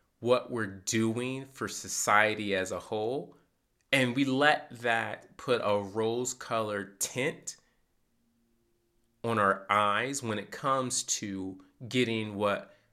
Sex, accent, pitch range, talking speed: male, American, 105-150 Hz, 120 wpm